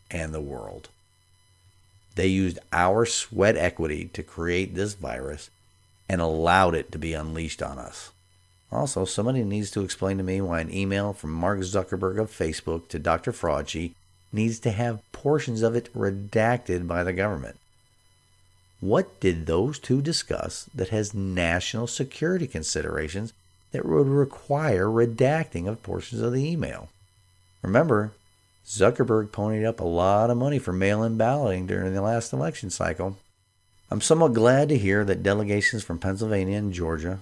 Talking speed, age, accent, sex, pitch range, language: 150 wpm, 50-69, American, male, 90-110 Hz, English